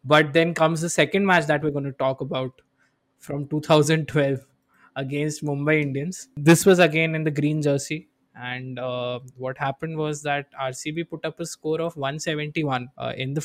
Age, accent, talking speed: 20-39, native, 190 wpm